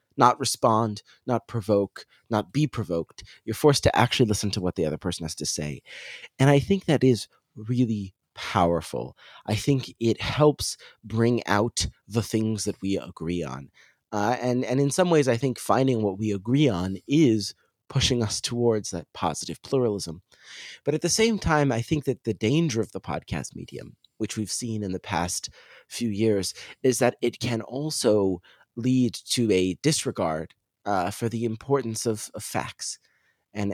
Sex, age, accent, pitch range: male, 30-49, American, 100-130 Hz